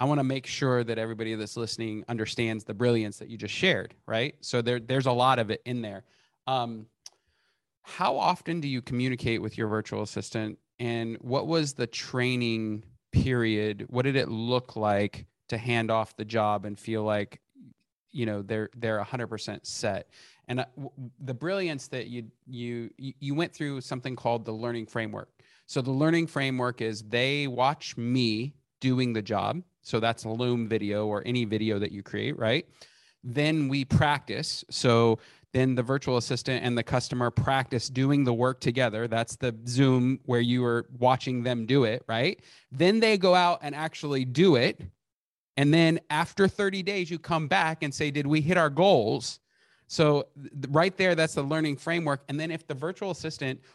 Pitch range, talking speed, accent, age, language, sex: 115-145 Hz, 180 wpm, American, 30-49, English, male